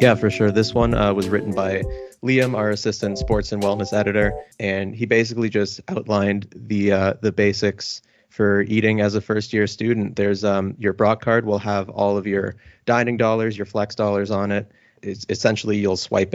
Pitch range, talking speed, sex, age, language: 100-110 Hz, 195 wpm, male, 30-49, English